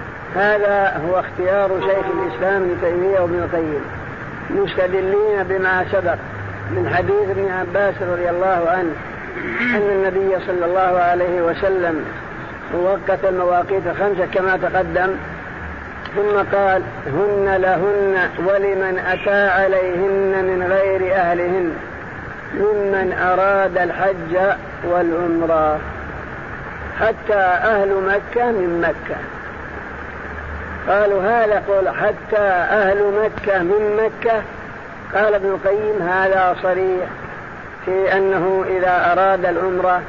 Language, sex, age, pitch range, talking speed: Arabic, female, 50-69, 180-200 Hz, 95 wpm